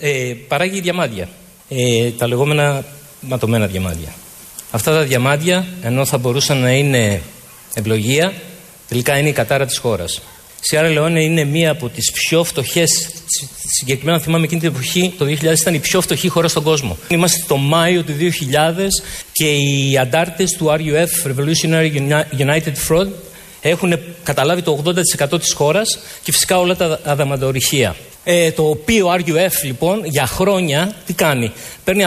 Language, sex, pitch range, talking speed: Greek, male, 140-175 Hz, 145 wpm